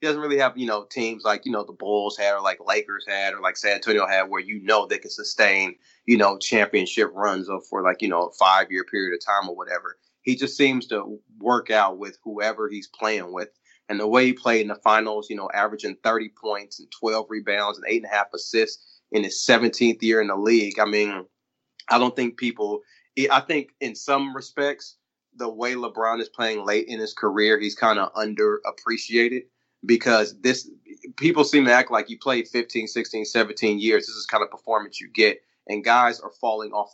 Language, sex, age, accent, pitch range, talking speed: English, male, 30-49, American, 105-125 Hz, 220 wpm